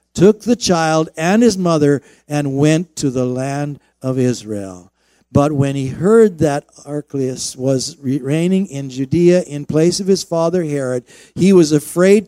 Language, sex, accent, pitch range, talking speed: English, male, American, 130-165 Hz, 155 wpm